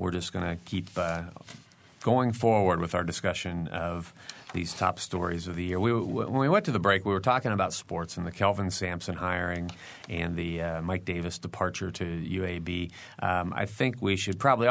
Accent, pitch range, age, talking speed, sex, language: American, 85-100 Hz, 40-59, 200 wpm, male, English